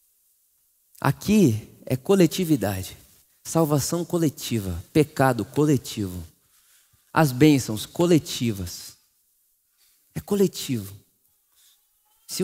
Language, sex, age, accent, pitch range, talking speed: Portuguese, male, 20-39, Brazilian, 120-200 Hz, 65 wpm